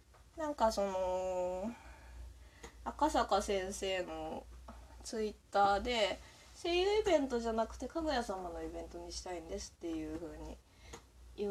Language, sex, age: Japanese, female, 20-39